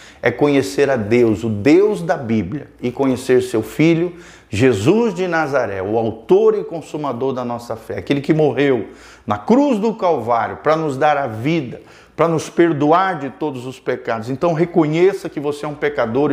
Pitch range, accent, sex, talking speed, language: 115-160 Hz, Brazilian, male, 175 wpm, Portuguese